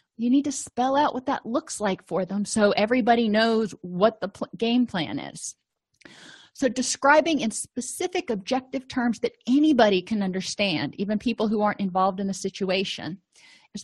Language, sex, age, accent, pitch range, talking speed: English, female, 30-49, American, 195-245 Hz, 165 wpm